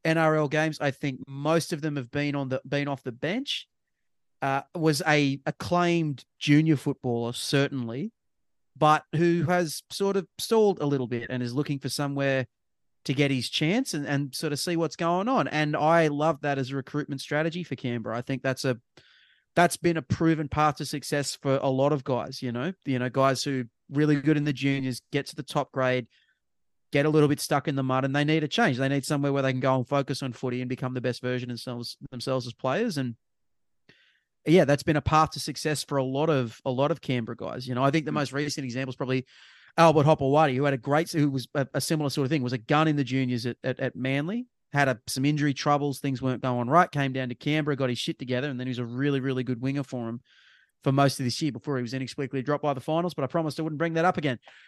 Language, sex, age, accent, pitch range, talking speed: English, male, 30-49, Australian, 130-155 Hz, 245 wpm